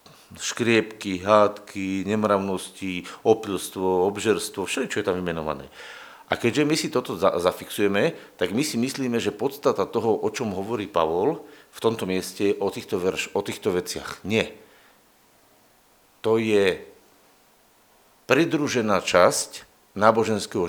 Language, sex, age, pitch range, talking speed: Slovak, male, 50-69, 100-135 Hz, 120 wpm